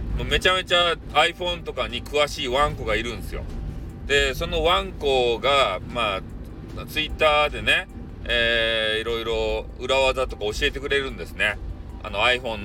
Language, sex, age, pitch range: Japanese, male, 40-59, 110-155 Hz